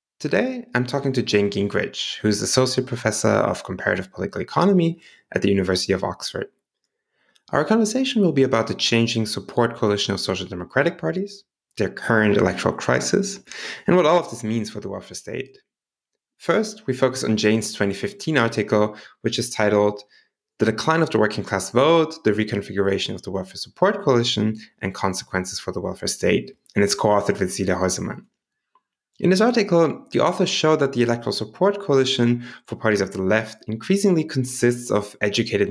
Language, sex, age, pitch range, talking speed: English, male, 20-39, 105-160 Hz, 170 wpm